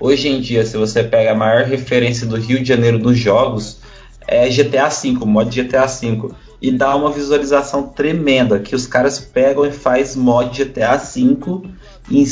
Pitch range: 110-135 Hz